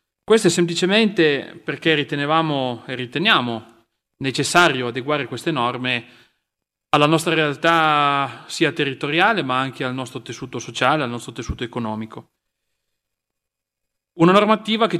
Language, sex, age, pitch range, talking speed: Italian, male, 30-49, 120-160 Hz, 115 wpm